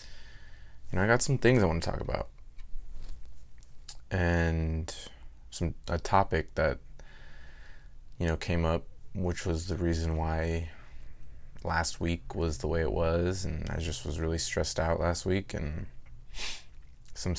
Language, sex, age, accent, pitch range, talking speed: English, male, 20-39, American, 75-90 Hz, 150 wpm